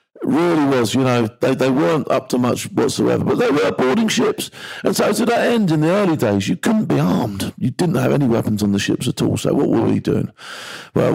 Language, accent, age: English, British, 50-69